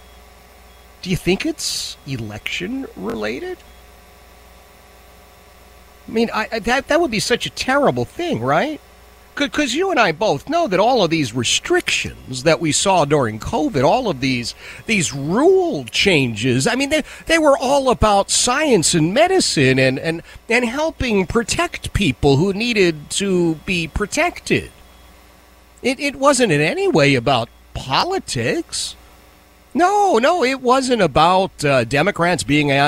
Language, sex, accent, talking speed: English, male, American, 140 wpm